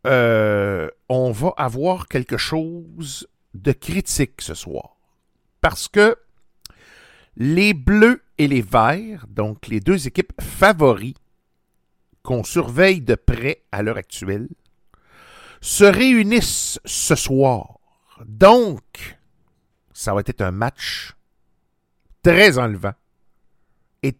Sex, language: male, French